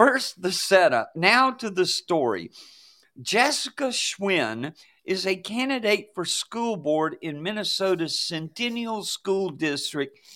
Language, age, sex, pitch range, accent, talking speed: English, 50-69, male, 170-230 Hz, American, 115 wpm